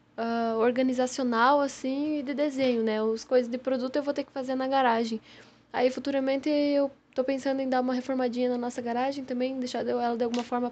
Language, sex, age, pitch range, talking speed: Portuguese, female, 10-29, 235-260 Hz, 200 wpm